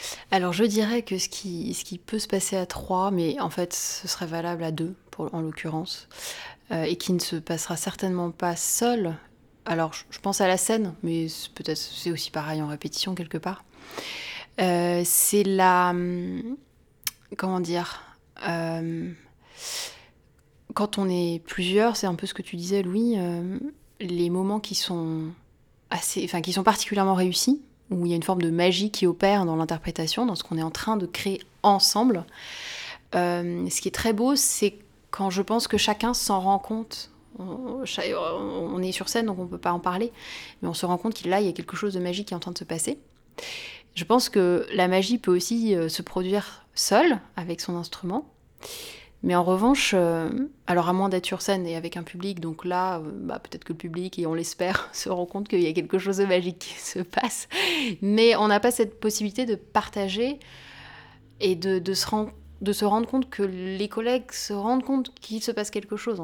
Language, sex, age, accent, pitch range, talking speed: French, female, 20-39, French, 175-215 Hz, 195 wpm